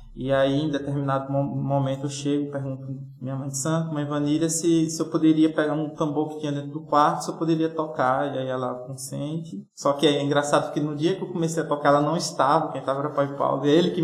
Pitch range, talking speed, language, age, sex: 130-150 Hz, 245 wpm, Portuguese, 20-39, male